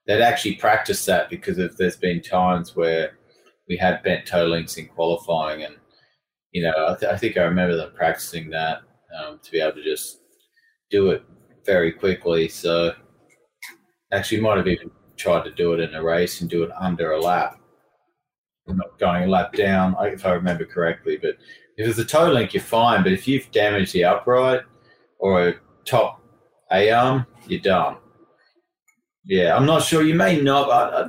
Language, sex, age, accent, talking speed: English, male, 30-49, Australian, 180 wpm